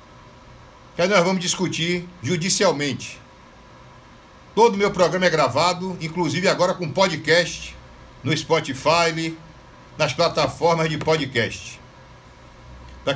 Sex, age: male, 60-79